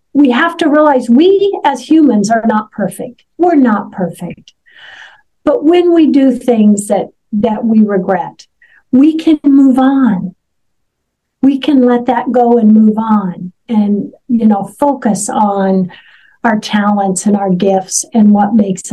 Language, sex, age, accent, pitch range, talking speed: English, female, 50-69, American, 225-280 Hz, 150 wpm